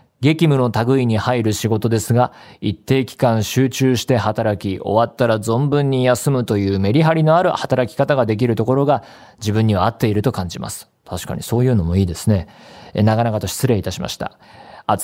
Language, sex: Japanese, male